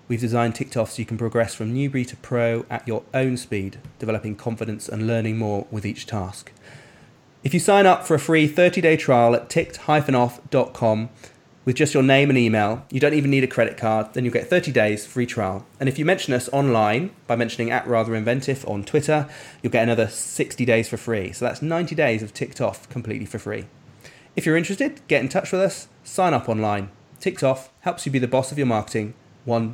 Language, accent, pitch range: English, British, 110-145 Hz